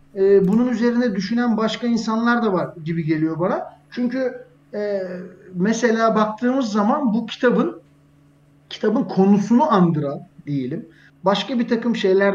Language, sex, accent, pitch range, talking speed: Turkish, male, native, 170-215 Hz, 125 wpm